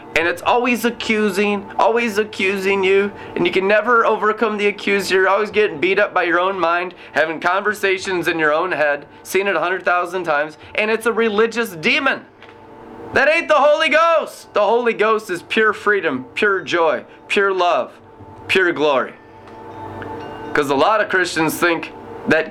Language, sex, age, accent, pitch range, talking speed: English, male, 30-49, American, 140-205 Hz, 165 wpm